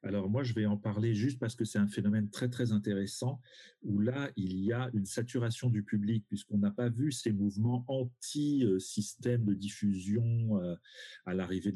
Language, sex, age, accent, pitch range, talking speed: French, male, 40-59, French, 100-125 Hz, 180 wpm